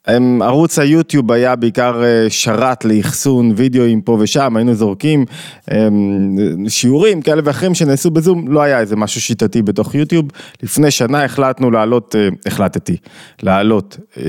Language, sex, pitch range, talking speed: Hebrew, male, 115-140 Hz, 120 wpm